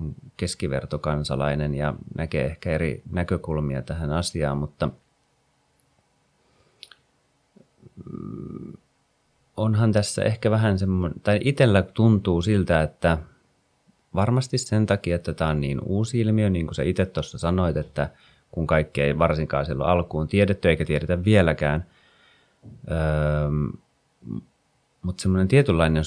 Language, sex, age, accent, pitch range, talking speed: Finnish, male, 30-49, native, 75-95 Hz, 115 wpm